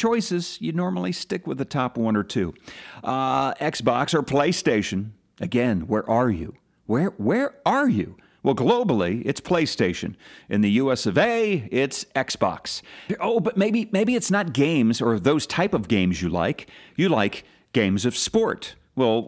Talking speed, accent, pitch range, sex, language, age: 165 wpm, American, 110-180 Hz, male, English, 50-69